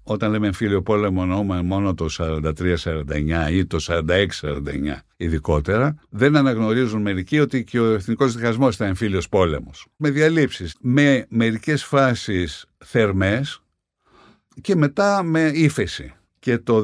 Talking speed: 125 wpm